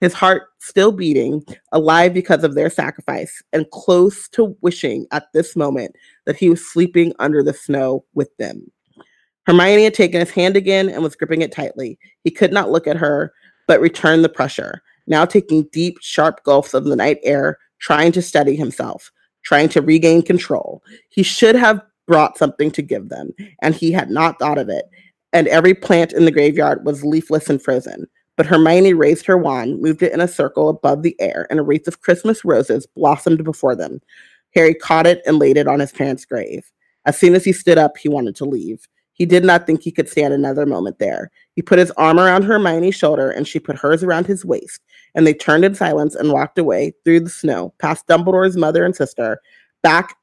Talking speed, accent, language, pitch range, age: 205 wpm, American, English, 150-180 Hz, 30-49